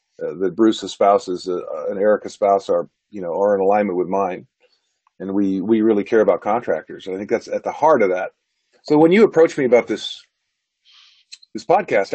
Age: 40-59